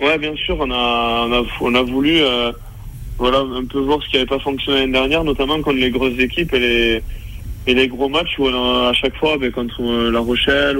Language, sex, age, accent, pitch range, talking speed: French, male, 20-39, French, 115-135 Hz, 235 wpm